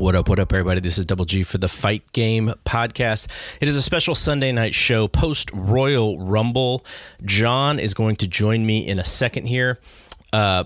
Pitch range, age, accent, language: 95-115 Hz, 30-49, American, English